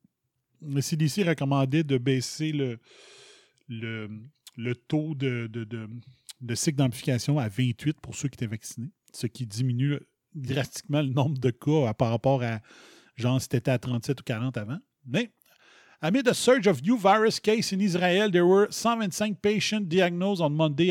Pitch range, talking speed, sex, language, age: 130-175 Hz, 160 wpm, male, French, 30-49